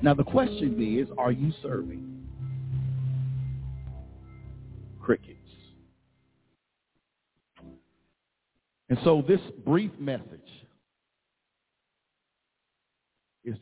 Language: English